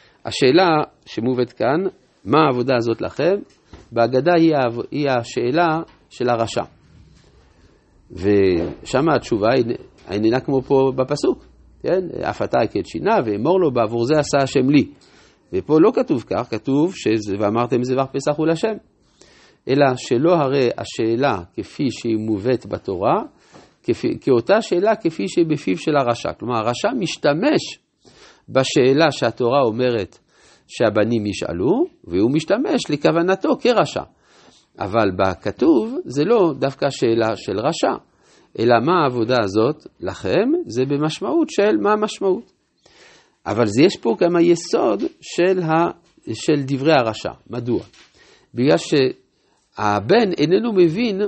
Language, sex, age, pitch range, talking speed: Hebrew, male, 50-69, 120-175 Hz, 115 wpm